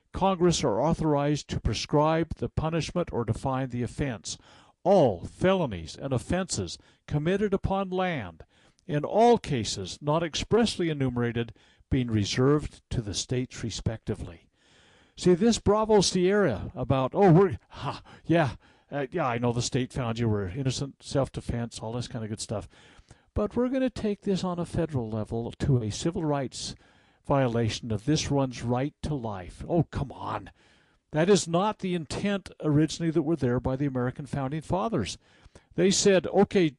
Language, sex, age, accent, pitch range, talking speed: English, male, 60-79, American, 120-180 Hz, 155 wpm